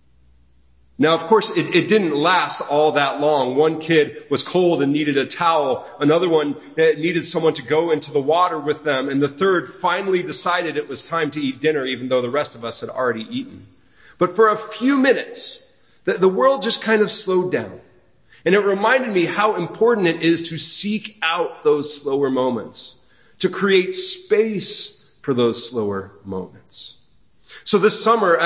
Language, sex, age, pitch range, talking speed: English, male, 40-59, 145-200 Hz, 180 wpm